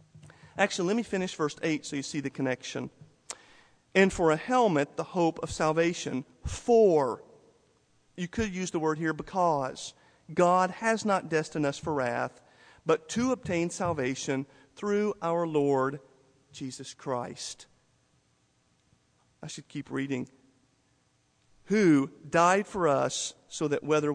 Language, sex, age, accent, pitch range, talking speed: English, male, 50-69, American, 135-175 Hz, 135 wpm